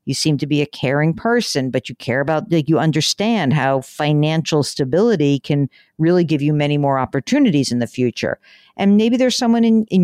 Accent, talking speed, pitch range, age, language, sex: American, 195 wpm, 145-205 Hz, 50-69, English, female